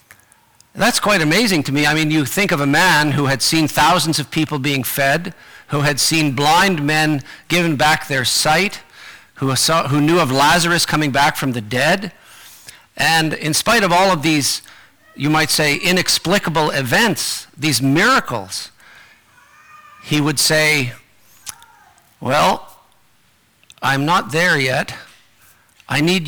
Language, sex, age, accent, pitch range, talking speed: English, male, 50-69, American, 140-170 Hz, 145 wpm